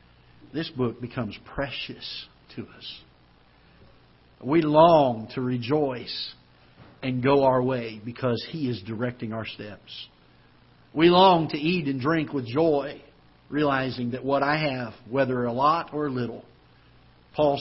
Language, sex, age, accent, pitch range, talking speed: English, male, 50-69, American, 105-135 Hz, 135 wpm